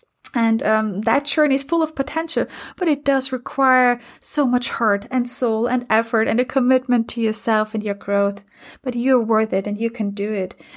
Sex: female